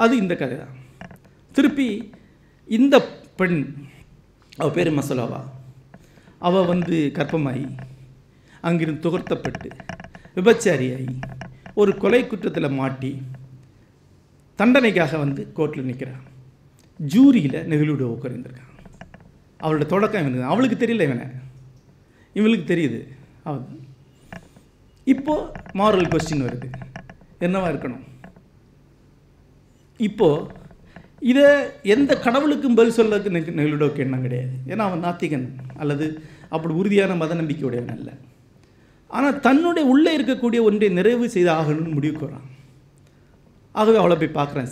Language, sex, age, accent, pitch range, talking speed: Tamil, male, 50-69, native, 135-205 Hz, 100 wpm